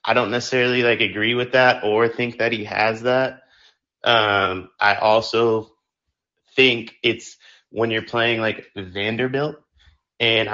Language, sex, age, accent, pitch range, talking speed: English, male, 30-49, American, 105-125 Hz, 135 wpm